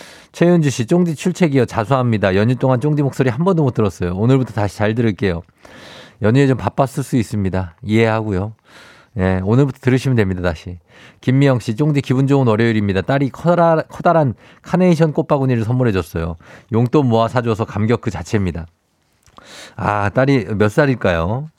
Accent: native